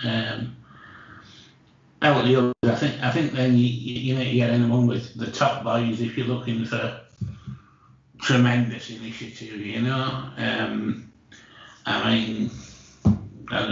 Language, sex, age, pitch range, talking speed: English, male, 60-79, 110-120 Hz, 120 wpm